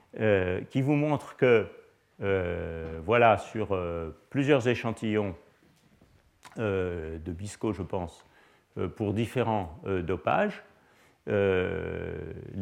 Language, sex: French, male